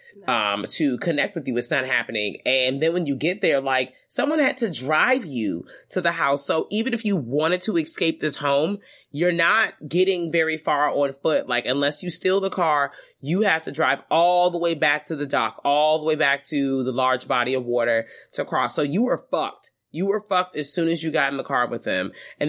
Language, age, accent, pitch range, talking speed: English, 20-39, American, 135-185 Hz, 230 wpm